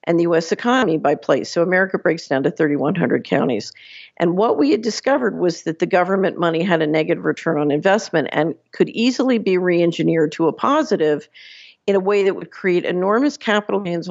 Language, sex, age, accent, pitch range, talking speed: English, female, 50-69, American, 160-200 Hz, 195 wpm